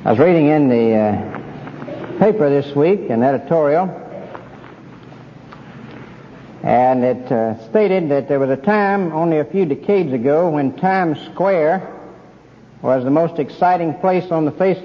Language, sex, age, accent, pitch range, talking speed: English, male, 60-79, American, 140-180 Hz, 145 wpm